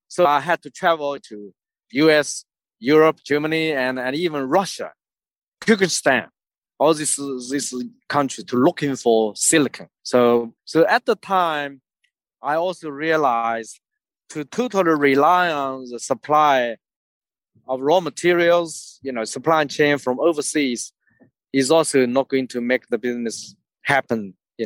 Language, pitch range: Chinese, 130-170 Hz